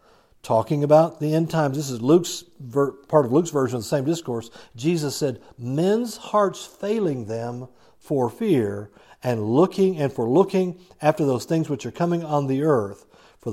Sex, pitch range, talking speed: male, 120-170 Hz, 175 wpm